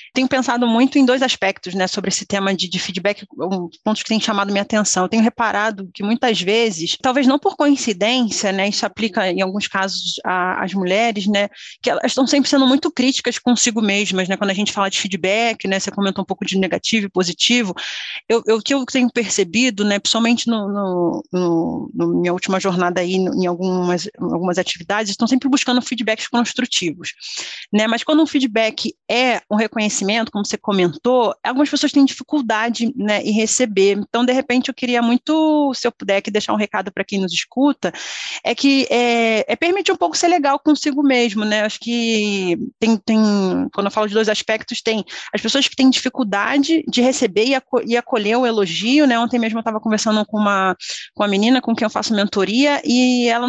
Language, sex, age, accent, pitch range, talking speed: Portuguese, female, 20-39, Brazilian, 200-250 Hz, 200 wpm